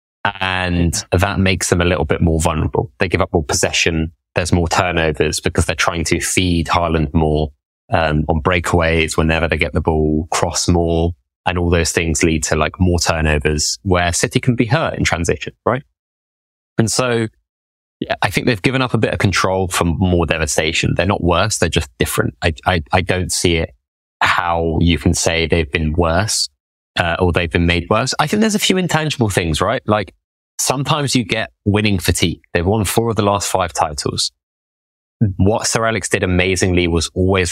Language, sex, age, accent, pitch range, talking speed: English, male, 20-39, British, 80-100 Hz, 190 wpm